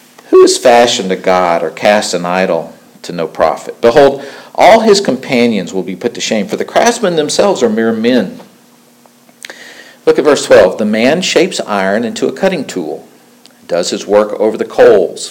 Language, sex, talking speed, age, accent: English, male, 180 wpm, 50-69, American